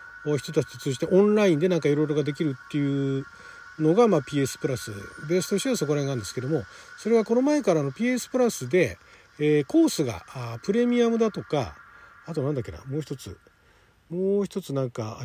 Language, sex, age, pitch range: Japanese, male, 40-59, 145-235 Hz